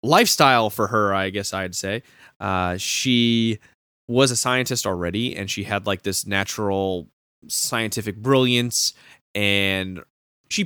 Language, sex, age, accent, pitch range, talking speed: English, male, 20-39, American, 95-125 Hz, 130 wpm